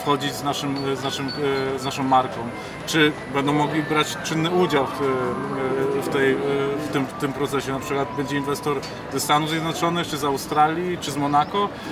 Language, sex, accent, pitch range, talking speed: Polish, male, native, 135-150 Hz, 180 wpm